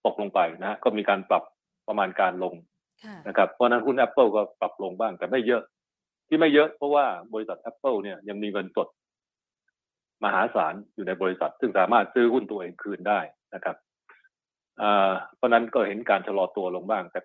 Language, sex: Thai, male